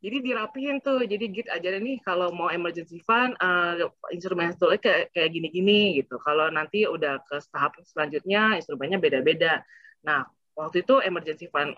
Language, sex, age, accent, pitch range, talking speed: Indonesian, female, 20-39, native, 150-205 Hz, 160 wpm